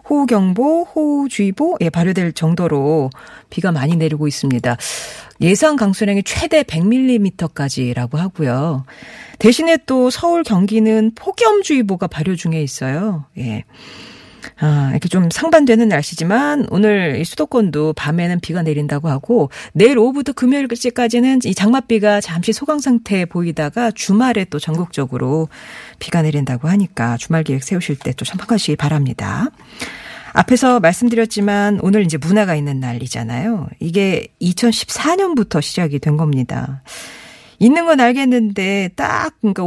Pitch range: 155-240 Hz